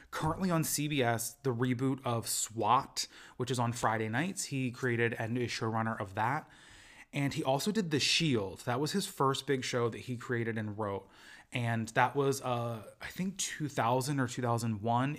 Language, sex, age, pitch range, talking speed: English, male, 20-39, 115-135 Hz, 180 wpm